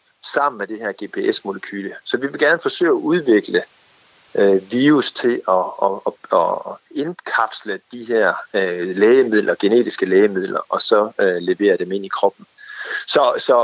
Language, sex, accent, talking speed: Danish, male, native, 160 wpm